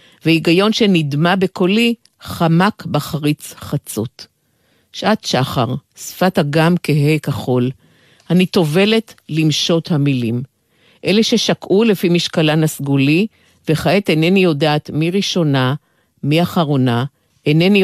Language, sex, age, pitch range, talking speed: Hebrew, female, 50-69, 150-185 Hz, 100 wpm